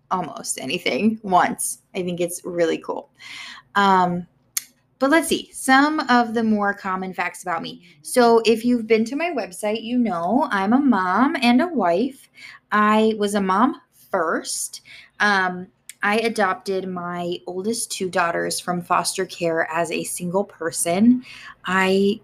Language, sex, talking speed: English, female, 150 wpm